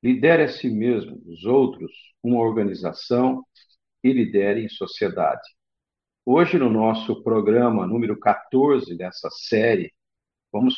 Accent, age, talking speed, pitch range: Brazilian, 50-69, 115 wpm, 115-150 Hz